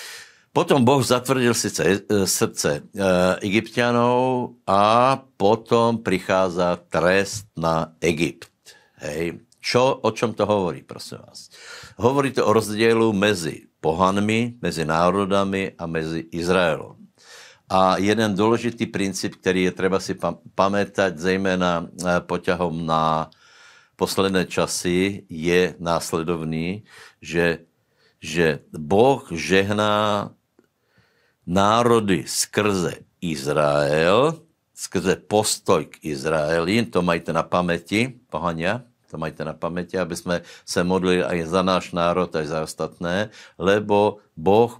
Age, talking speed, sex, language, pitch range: 60-79, 105 wpm, male, Slovak, 85-110 Hz